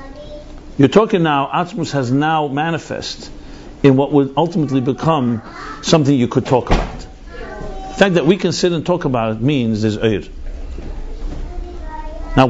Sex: male